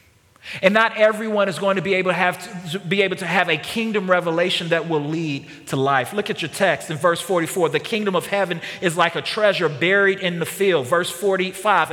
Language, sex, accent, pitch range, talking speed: English, male, American, 160-200 Hz, 220 wpm